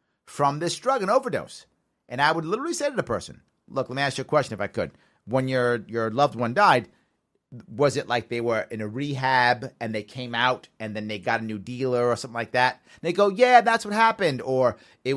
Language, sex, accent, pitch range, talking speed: English, male, American, 125-190 Hz, 235 wpm